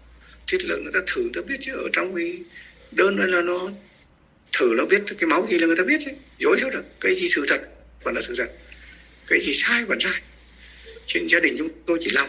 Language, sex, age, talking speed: Vietnamese, male, 60-79, 245 wpm